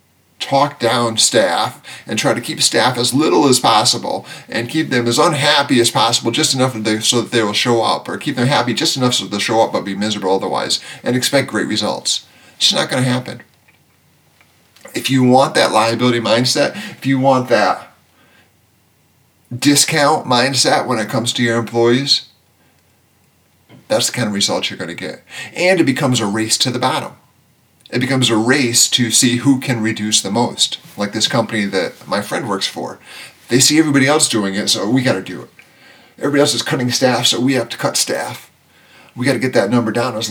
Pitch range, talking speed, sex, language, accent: 110-135 Hz, 195 wpm, male, English, American